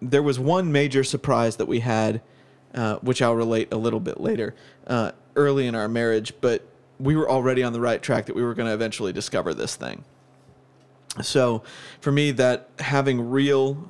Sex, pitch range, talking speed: male, 120-135 Hz, 190 wpm